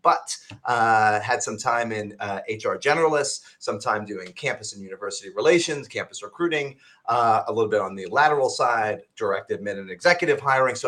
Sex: male